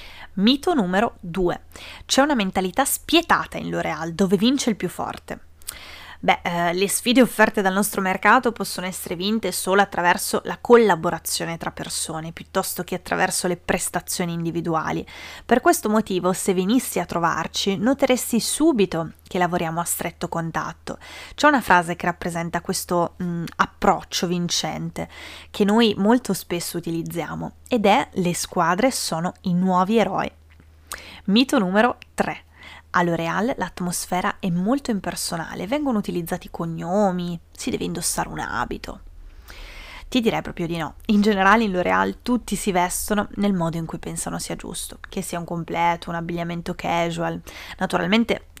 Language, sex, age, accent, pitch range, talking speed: Italian, female, 20-39, native, 165-205 Hz, 140 wpm